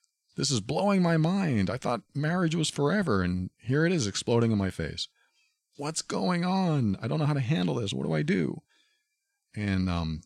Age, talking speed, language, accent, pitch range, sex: 40-59, 200 wpm, English, American, 85-140 Hz, male